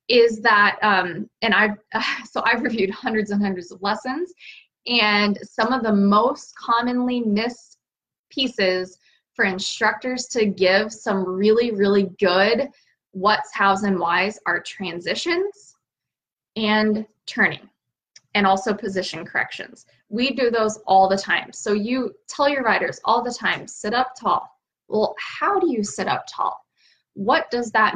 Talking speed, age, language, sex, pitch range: 145 wpm, 20-39, English, female, 195-235 Hz